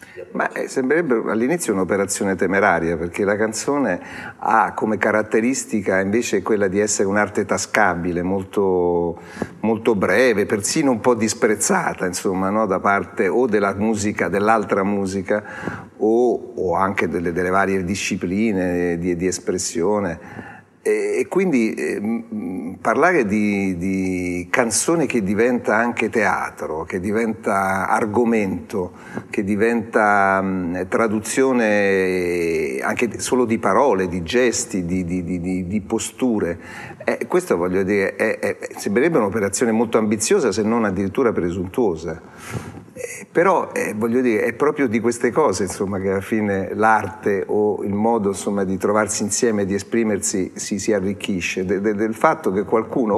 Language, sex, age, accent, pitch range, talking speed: Italian, male, 50-69, native, 95-110 Hz, 130 wpm